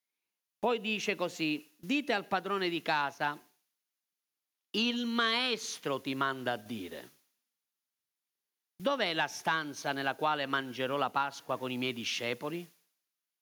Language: Italian